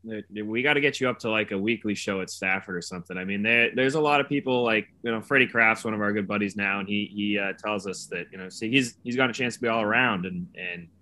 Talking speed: 300 wpm